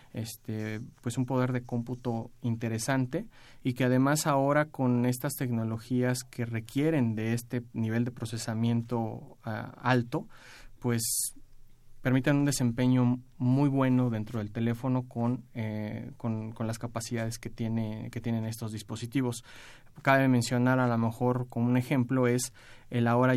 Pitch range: 115-125 Hz